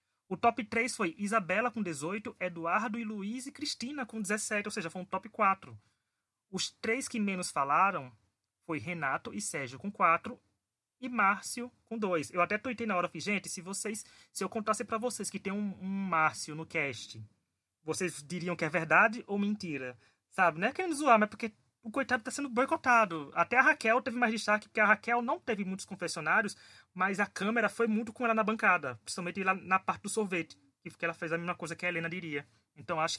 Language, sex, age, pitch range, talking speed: Portuguese, male, 20-39, 160-220 Hz, 210 wpm